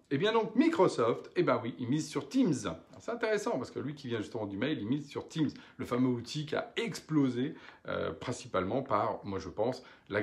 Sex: male